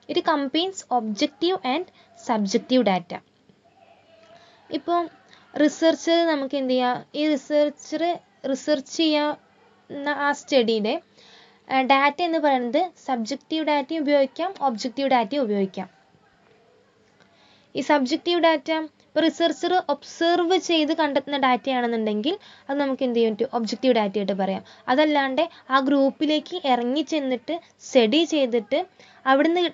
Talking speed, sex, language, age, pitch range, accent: 60 wpm, female, English, 20-39, 235-320 Hz, Indian